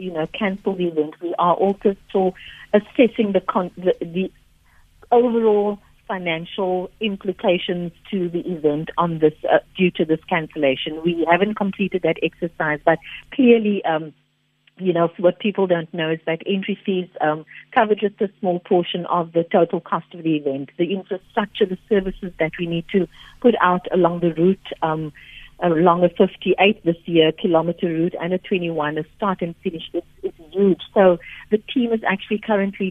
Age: 50-69